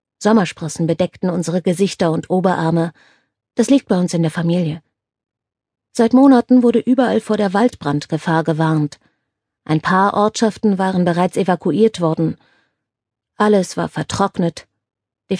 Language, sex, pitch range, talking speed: German, female, 155-210 Hz, 125 wpm